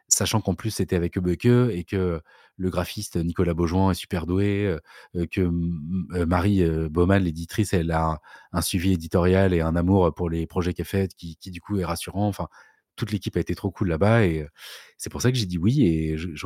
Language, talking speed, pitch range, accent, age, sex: French, 210 wpm, 85-105 Hz, French, 30-49, male